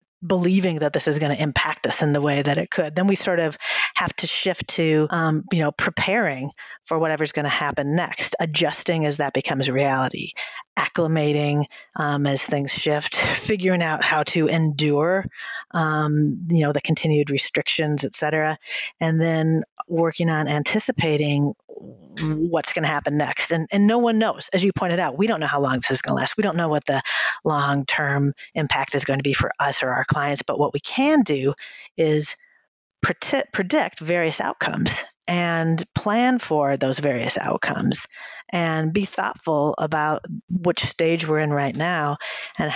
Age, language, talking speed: 40-59, English, 175 wpm